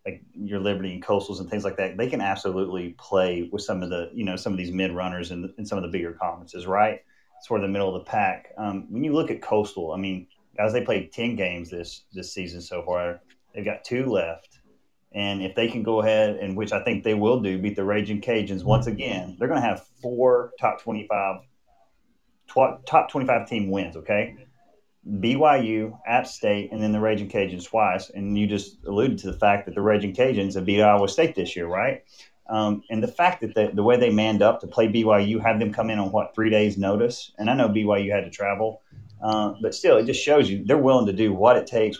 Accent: American